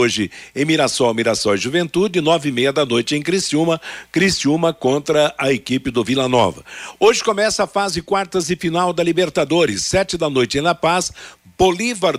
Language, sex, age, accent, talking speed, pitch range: Portuguese, male, 60-79, Brazilian, 170 wpm, 135-175 Hz